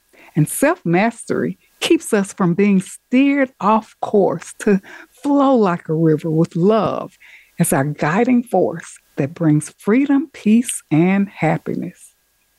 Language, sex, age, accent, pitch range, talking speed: English, female, 60-79, American, 170-245 Hz, 125 wpm